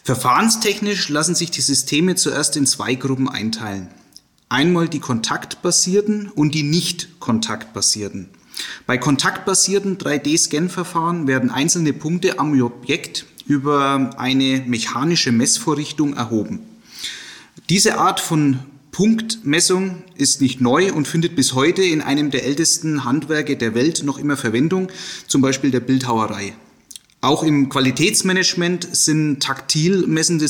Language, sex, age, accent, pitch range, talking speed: German, male, 30-49, German, 130-170 Hz, 120 wpm